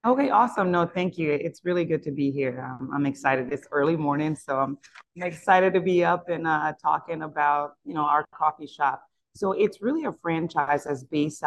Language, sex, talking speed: English, female, 205 wpm